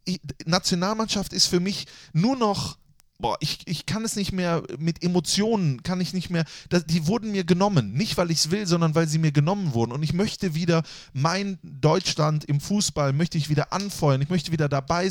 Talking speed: 205 wpm